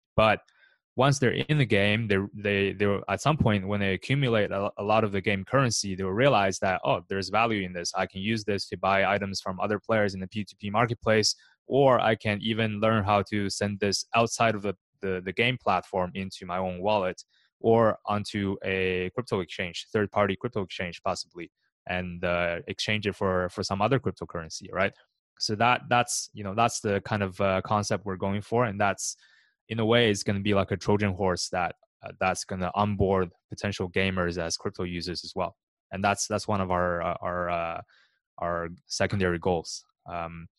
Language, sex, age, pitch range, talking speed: English, male, 20-39, 95-110 Hz, 200 wpm